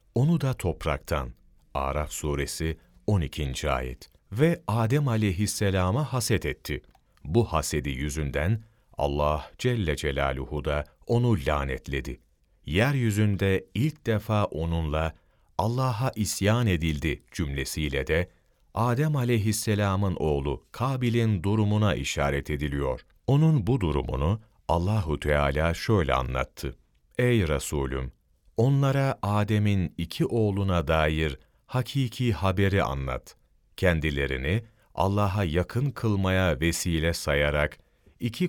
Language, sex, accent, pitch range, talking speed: Turkish, male, native, 75-115 Hz, 95 wpm